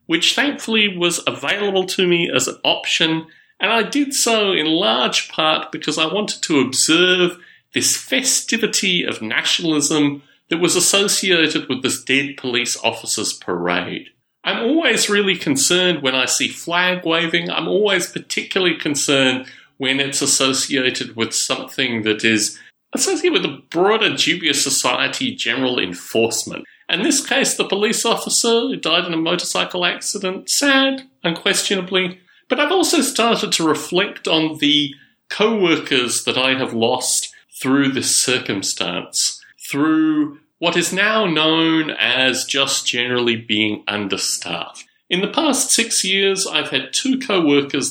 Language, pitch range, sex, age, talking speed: English, 140-210 Hz, male, 30-49, 140 wpm